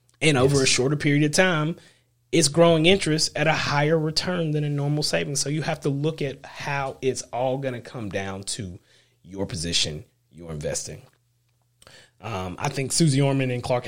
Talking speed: 185 wpm